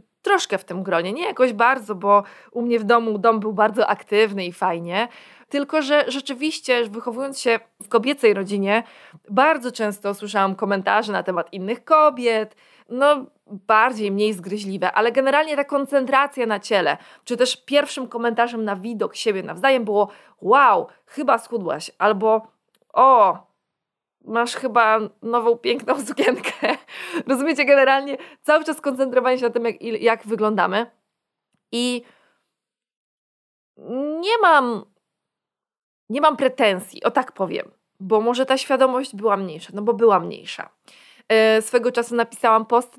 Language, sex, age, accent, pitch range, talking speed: Polish, female, 20-39, native, 210-260 Hz, 135 wpm